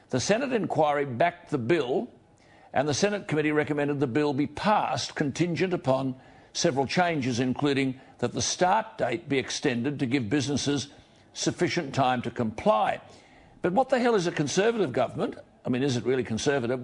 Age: 60-79